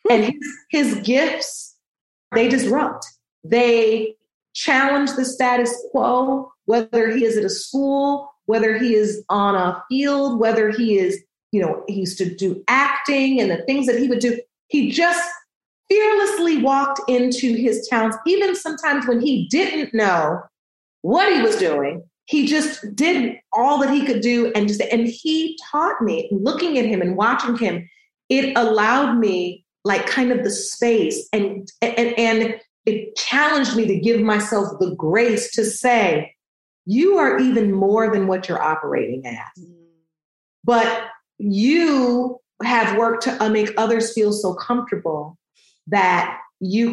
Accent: American